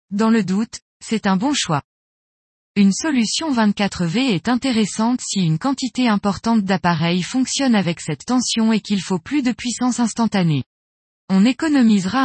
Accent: French